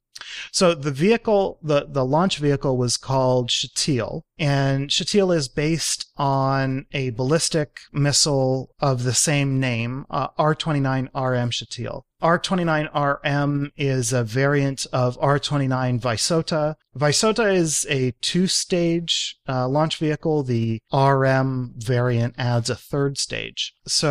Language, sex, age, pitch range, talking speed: English, male, 30-49, 120-150 Hz, 120 wpm